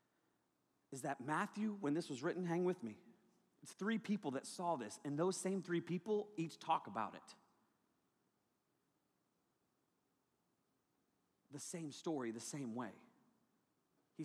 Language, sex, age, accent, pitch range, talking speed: English, male, 30-49, American, 165-265 Hz, 135 wpm